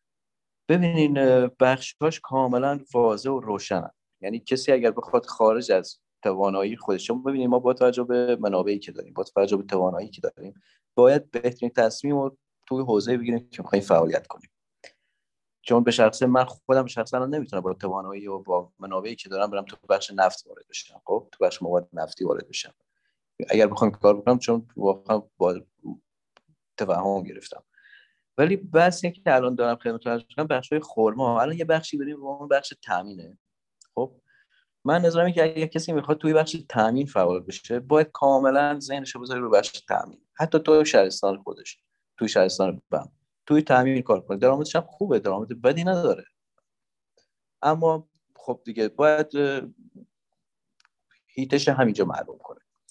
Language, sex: Persian, male